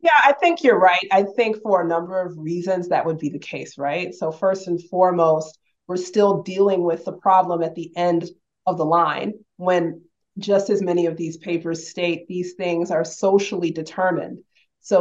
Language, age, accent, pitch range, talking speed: English, 30-49, American, 165-190 Hz, 190 wpm